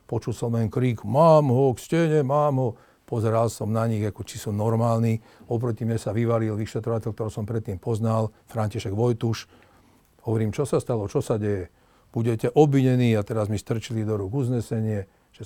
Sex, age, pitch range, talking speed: male, 50-69, 105-120 Hz, 180 wpm